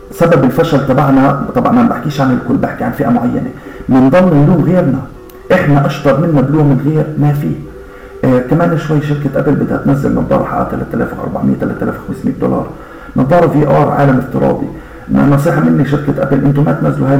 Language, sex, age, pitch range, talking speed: Arabic, male, 50-69, 130-150 Hz, 170 wpm